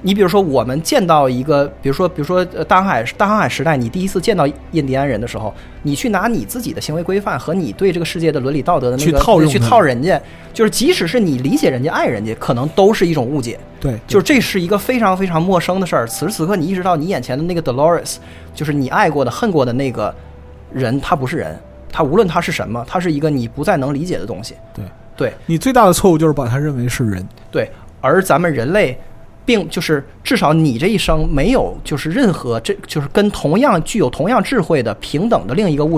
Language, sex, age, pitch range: Chinese, male, 20-39, 125-180 Hz